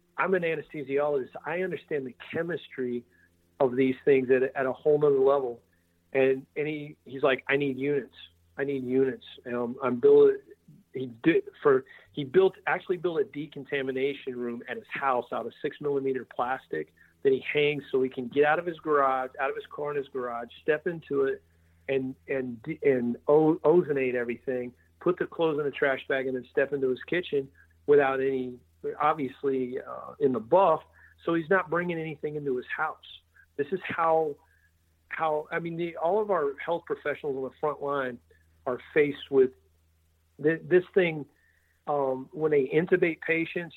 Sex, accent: male, American